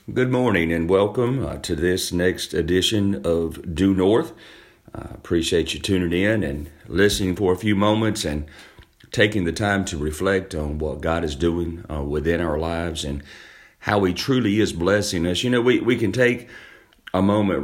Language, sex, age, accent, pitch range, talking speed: English, male, 40-59, American, 85-105 Hz, 185 wpm